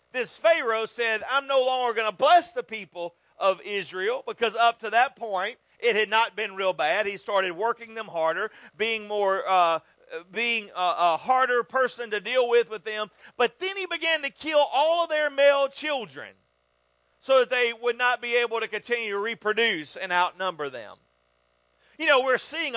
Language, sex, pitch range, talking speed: English, male, 205-260 Hz, 185 wpm